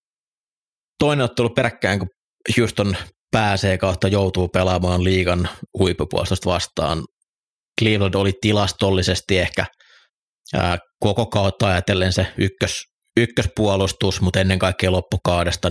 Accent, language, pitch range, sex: native, Finnish, 85-100 Hz, male